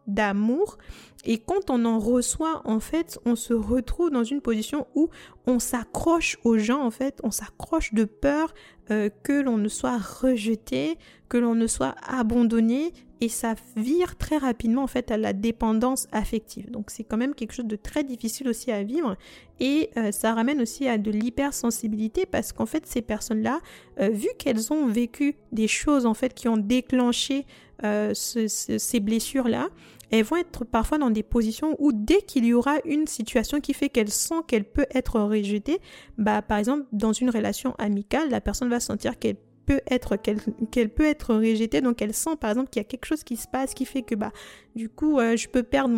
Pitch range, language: 225-280 Hz, French